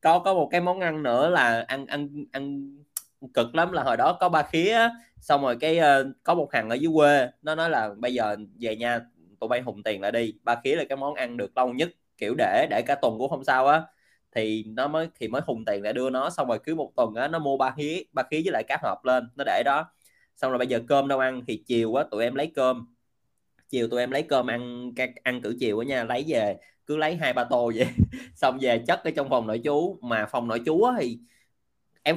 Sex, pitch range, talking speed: male, 125-165 Hz, 255 wpm